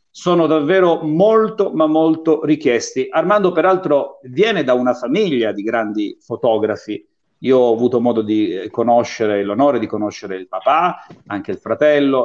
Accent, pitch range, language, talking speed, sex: native, 125-170 Hz, Italian, 140 wpm, male